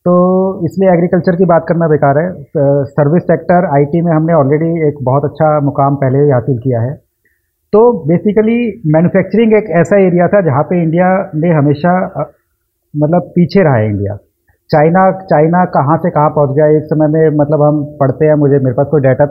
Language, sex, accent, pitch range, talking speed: Hindi, male, native, 140-175 Hz, 185 wpm